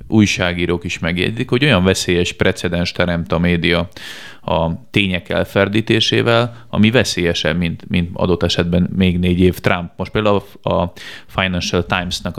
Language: Hungarian